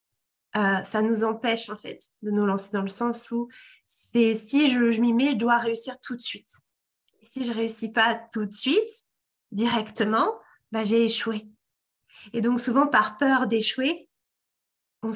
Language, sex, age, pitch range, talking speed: French, female, 20-39, 210-250 Hz, 175 wpm